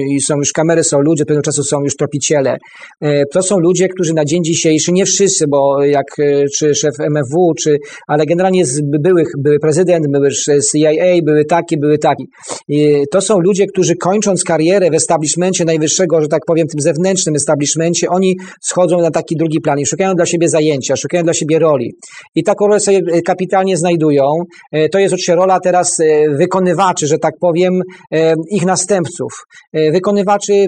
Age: 40-59